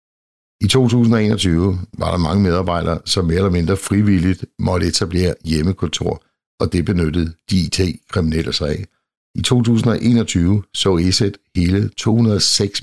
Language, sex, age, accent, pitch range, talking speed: Danish, male, 60-79, native, 85-105 Hz, 120 wpm